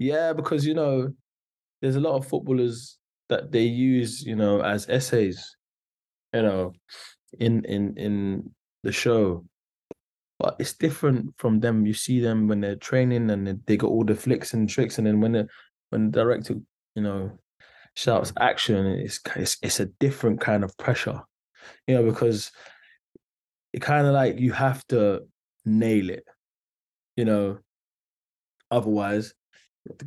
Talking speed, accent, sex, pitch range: 155 wpm, British, male, 100-125 Hz